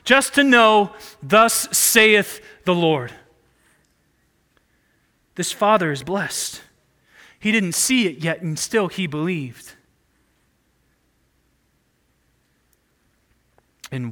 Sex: male